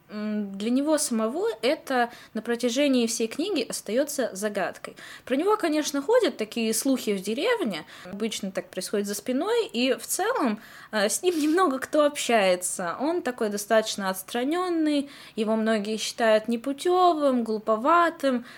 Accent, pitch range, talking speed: native, 210-290 Hz, 130 wpm